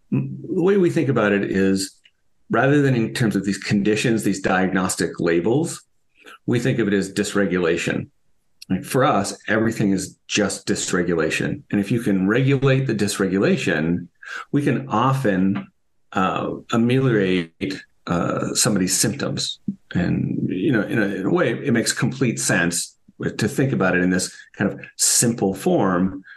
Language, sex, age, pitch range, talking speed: English, male, 40-59, 90-115 Hz, 150 wpm